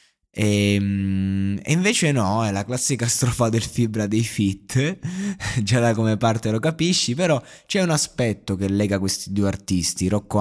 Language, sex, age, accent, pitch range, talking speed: Italian, male, 20-39, native, 95-125 Hz, 160 wpm